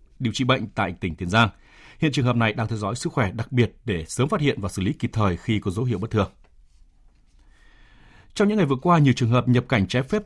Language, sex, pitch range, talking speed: Vietnamese, male, 100-145 Hz, 265 wpm